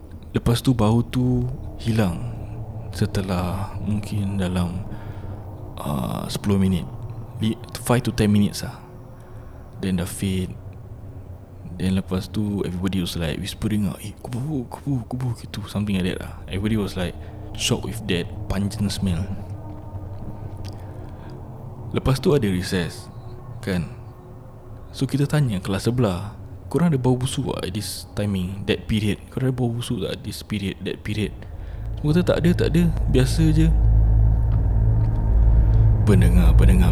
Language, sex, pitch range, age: Malay, male, 95-115 Hz, 20-39